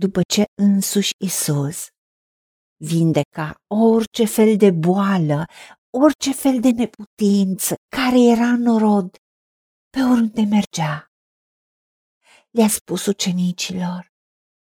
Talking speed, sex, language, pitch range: 95 wpm, female, Romanian, 185-250 Hz